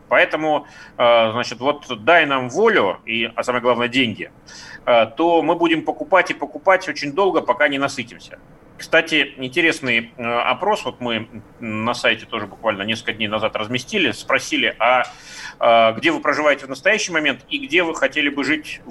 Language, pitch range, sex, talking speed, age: Russian, 120-170 Hz, male, 150 wpm, 30-49